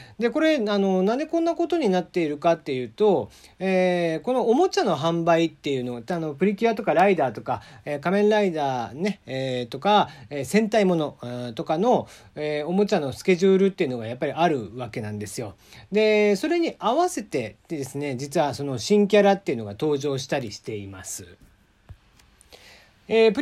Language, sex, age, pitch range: Japanese, male, 40-59, 140-220 Hz